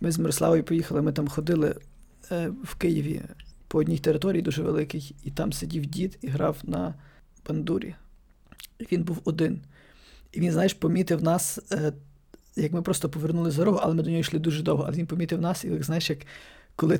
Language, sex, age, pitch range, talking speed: Ukrainian, male, 20-39, 150-170 Hz, 180 wpm